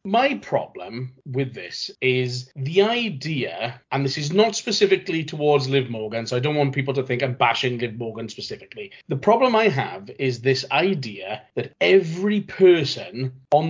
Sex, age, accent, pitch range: male, 30-49, British, 130-165 Hz